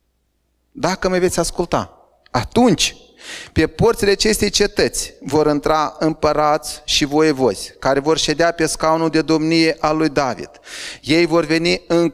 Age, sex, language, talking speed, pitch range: 30-49, male, Romanian, 140 wpm, 150-190 Hz